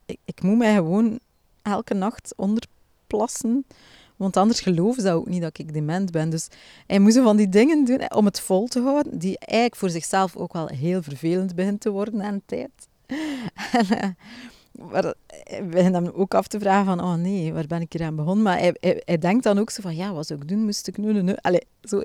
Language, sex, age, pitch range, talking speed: Dutch, female, 30-49, 165-215 Hz, 225 wpm